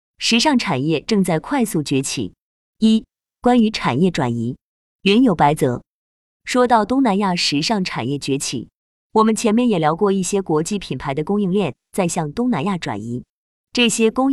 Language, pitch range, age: Chinese, 150-230 Hz, 20-39